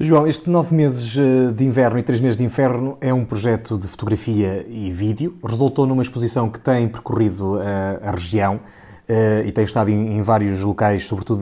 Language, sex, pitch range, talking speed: Portuguese, male, 105-130 Hz, 190 wpm